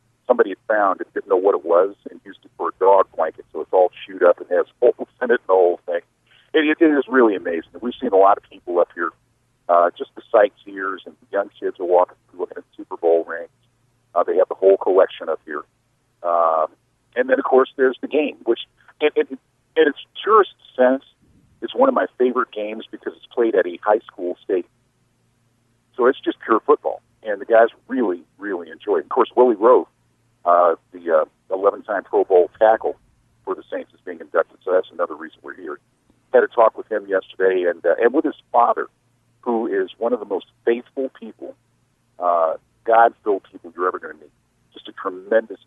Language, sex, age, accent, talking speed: English, male, 50-69, American, 210 wpm